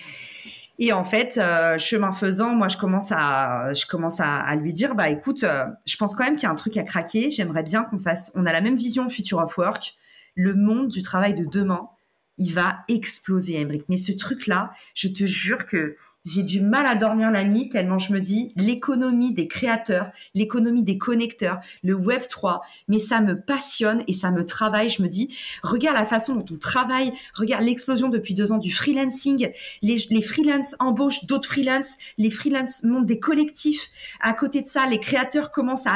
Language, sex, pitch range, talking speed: French, female, 200-255 Hz, 200 wpm